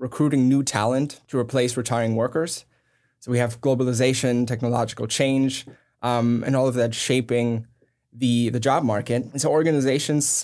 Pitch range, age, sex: 120-135 Hz, 10-29, male